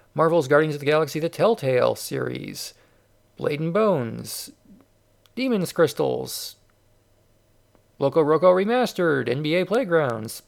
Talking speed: 95 wpm